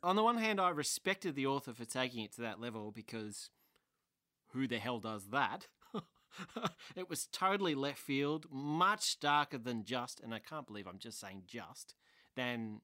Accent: Australian